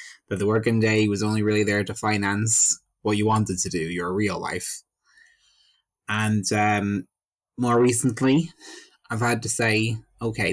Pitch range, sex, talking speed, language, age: 105-135 Hz, male, 155 wpm, English, 20-39